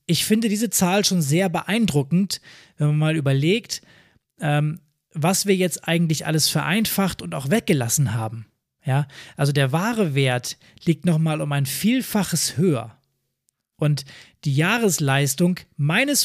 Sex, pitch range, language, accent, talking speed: male, 145-180 Hz, German, German, 130 wpm